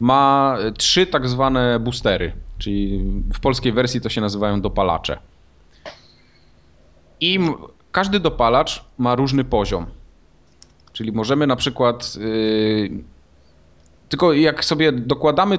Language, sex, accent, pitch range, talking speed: Polish, male, native, 95-140 Hz, 105 wpm